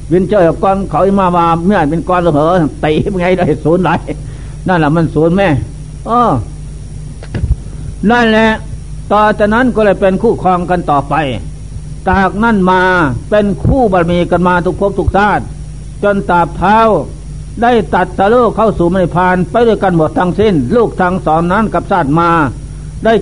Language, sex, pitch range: Thai, male, 155-210 Hz